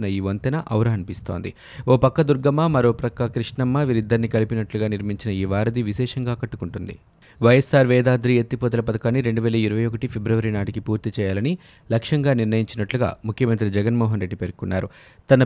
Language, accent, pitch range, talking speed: Telugu, native, 105-130 Hz, 130 wpm